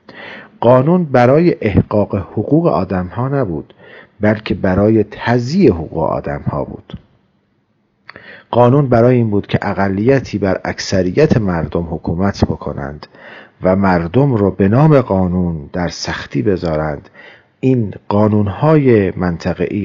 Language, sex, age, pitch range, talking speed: Persian, male, 40-59, 85-115 Hz, 110 wpm